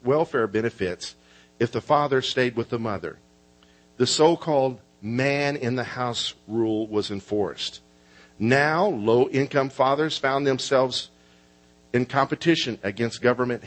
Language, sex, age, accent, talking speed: English, male, 50-69, American, 105 wpm